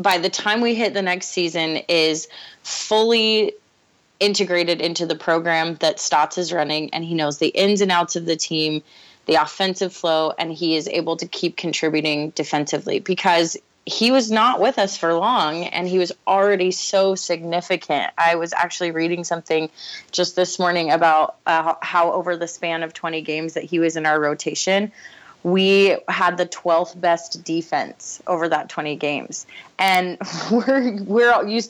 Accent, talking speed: American, 170 wpm